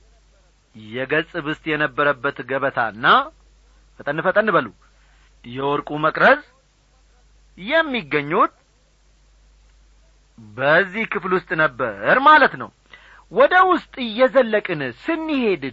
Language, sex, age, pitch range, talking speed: Amharic, male, 40-59, 120-185 Hz, 75 wpm